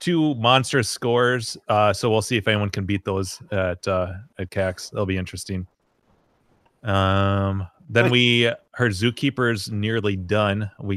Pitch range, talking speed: 100-125 Hz, 150 wpm